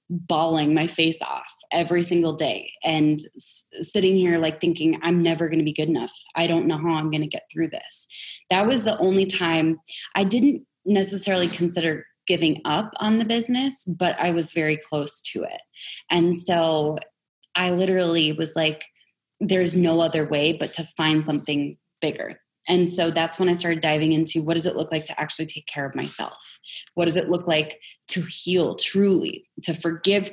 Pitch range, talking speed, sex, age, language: 160-180 Hz, 190 wpm, female, 20-39, English